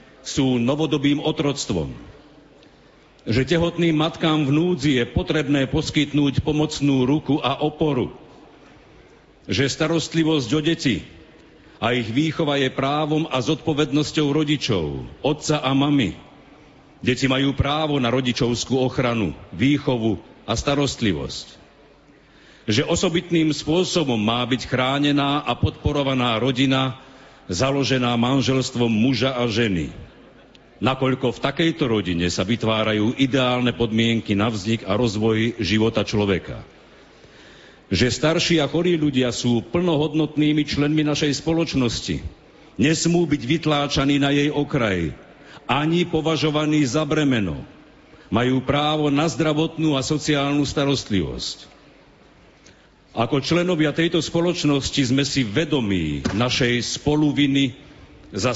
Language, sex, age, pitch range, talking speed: Slovak, male, 50-69, 120-150 Hz, 105 wpm